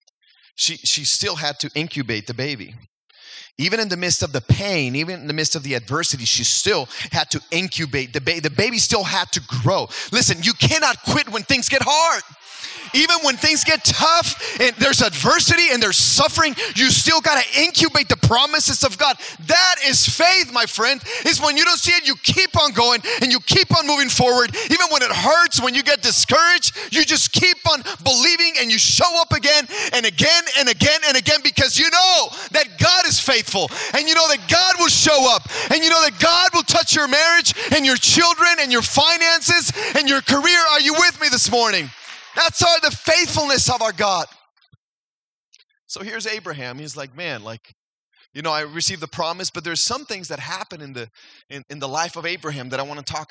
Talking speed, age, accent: 210 wpm, 30-49, American